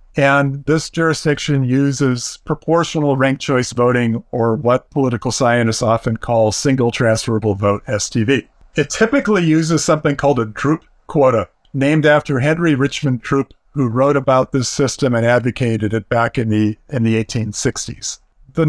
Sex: male